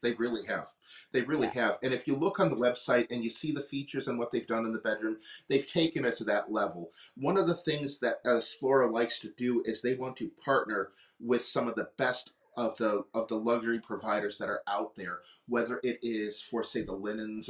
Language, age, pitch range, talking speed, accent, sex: English, 40-59, 115-135 Hz, 235 wpm, American, male